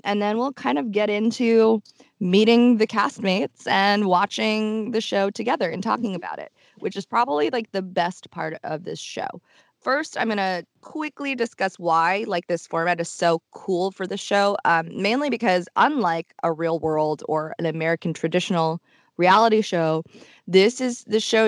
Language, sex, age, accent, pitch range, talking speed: English, female, 20-39, American, 165-205 Hz, 175 wpm